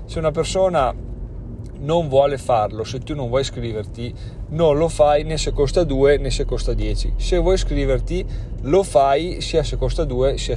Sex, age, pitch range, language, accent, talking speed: male, 30-49, 115-140 Hz, Italian, native, 180 wpm